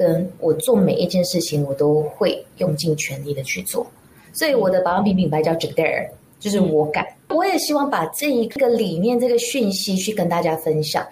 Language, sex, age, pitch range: Chinese, female, 20-39, 165-255 Hz